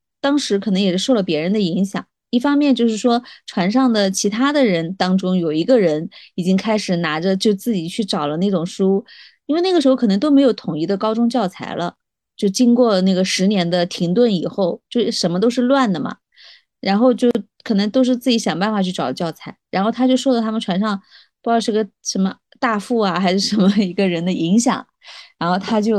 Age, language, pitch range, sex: 20-39, Chinese, 175-225 Hz, female